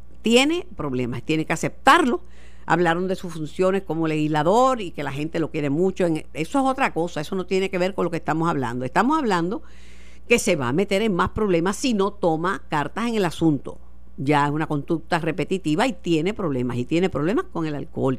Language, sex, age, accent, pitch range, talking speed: Spanish, female, 50-69, American, 145-190 Hz, 210 wpm